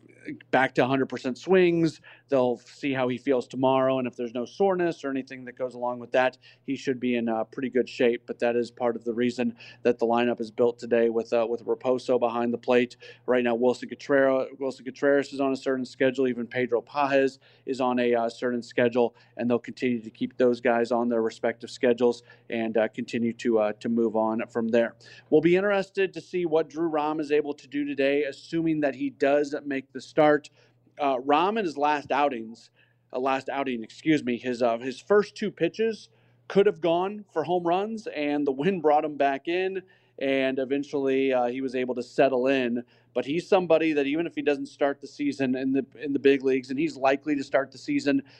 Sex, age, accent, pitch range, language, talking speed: male, 40-59, American, 120-145 Hz, English, 215 wpm